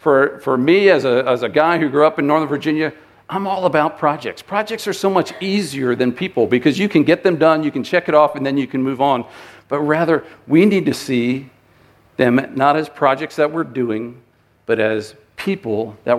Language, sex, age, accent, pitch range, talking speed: English, male, 50-69, American, 125-160 Hz, 220 wpm